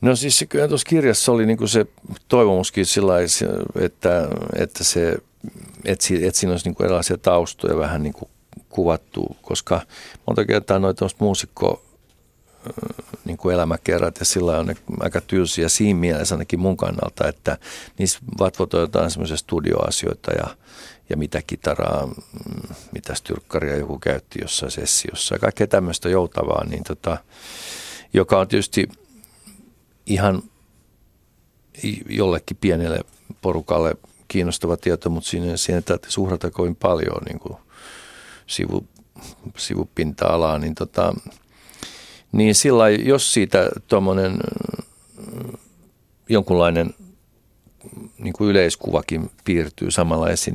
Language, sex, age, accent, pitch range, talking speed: Finnish, male, 50-69, native, 85-105 Hz, 110 wpm